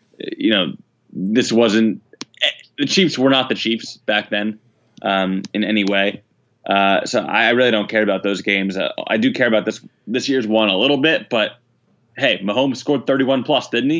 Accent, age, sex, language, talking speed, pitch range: American, 20-39, male, English, 190 wpm, 110-135 Hz